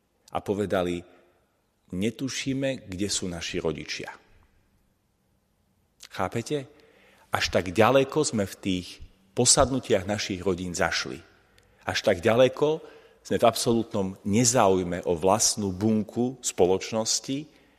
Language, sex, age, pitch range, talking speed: Slovak, male, 40-59, 95-130 Hz, 100 wpm